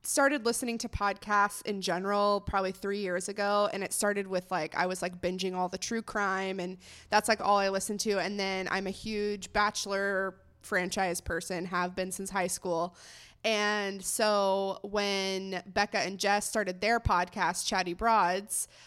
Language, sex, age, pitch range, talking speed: English, female, 20-39, 180-210 Hz, 170 wpm